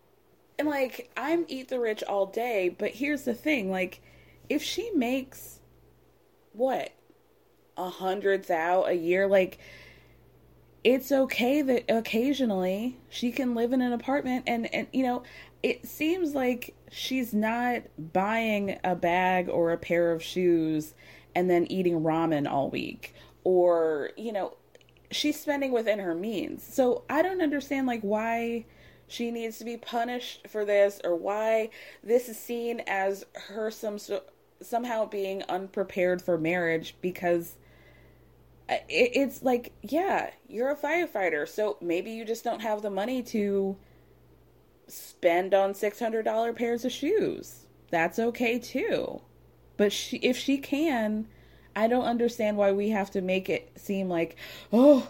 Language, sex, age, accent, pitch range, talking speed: English, female, 20-39, American, 190-255 Hz, 145 wpm